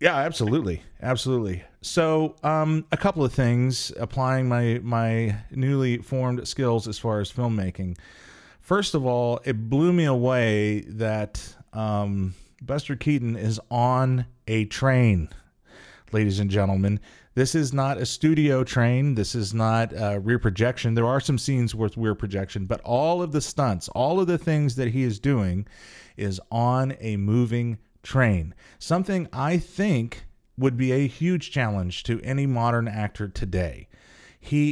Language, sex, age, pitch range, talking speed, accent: English, male, 30-49, 105-130 Hz, 155 wpm, American